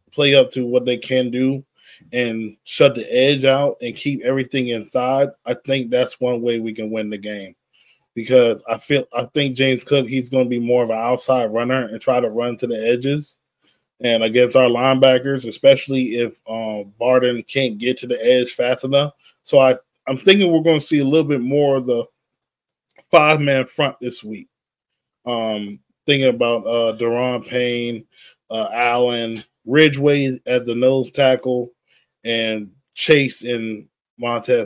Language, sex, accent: English, male, American